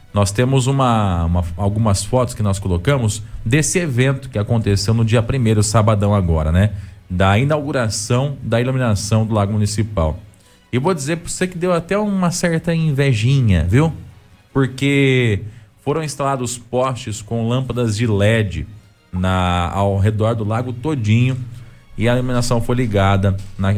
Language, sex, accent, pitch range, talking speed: Portuguese, male, Brazilian, 100-130 Hz, 145 wpm